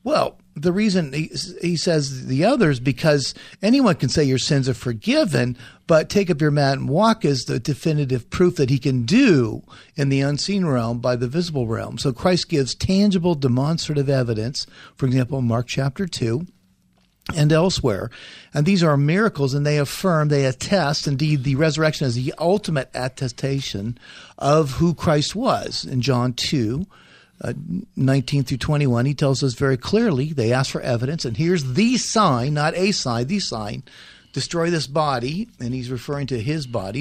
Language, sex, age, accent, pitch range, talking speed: English, male, 50-69, American, 125-155 Hz, 175 wpm